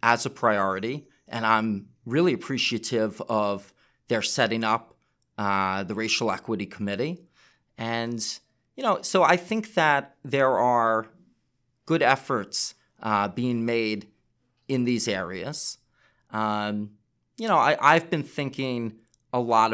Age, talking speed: 30-49, 130 wpm